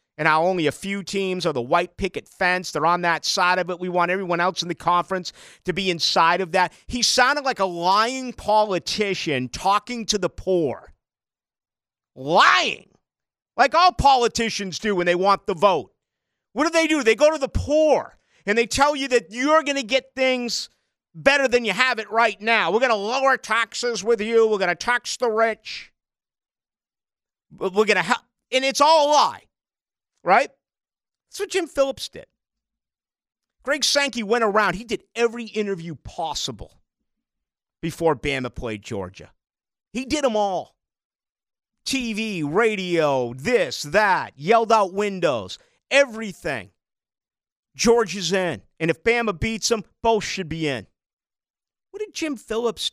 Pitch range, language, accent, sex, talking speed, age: 180-250 Hz, English, American, male, 160 wpm, 50-69